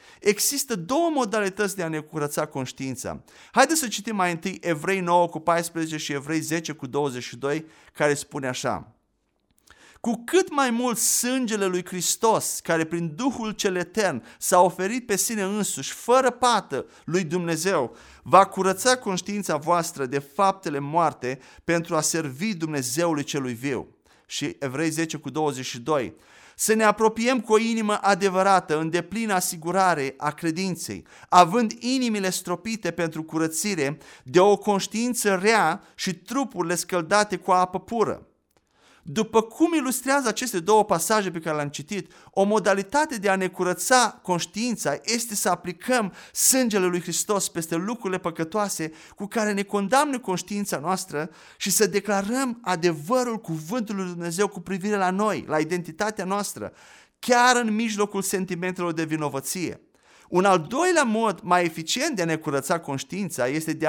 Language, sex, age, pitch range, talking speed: Romanian, male, 30-49, 165-215 Hz, 145 wpm